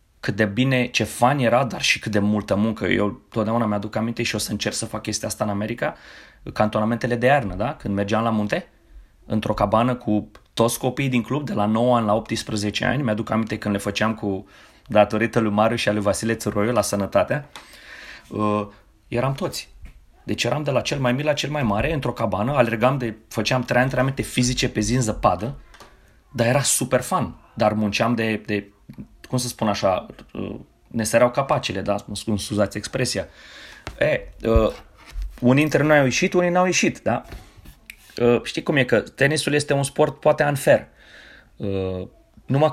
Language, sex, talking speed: Romanian, male, 185 wpm